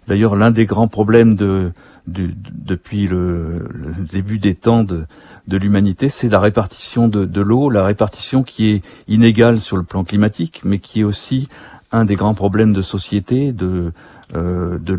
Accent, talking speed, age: French, 180 wpm, 50-69